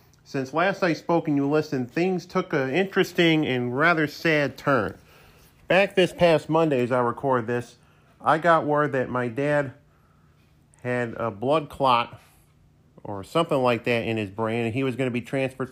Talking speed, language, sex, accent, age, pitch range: 180 wpm, English, male, American, 40-59, 115-140 Hz